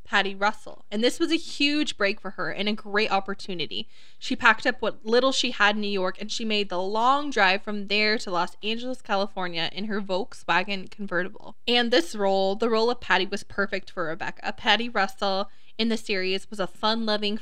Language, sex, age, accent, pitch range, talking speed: English, female, 20-39, American, 190-230 Hz, 205 wpm